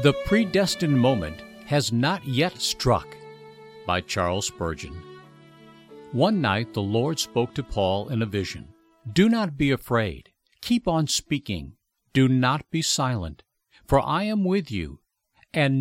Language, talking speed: English, 140 wpm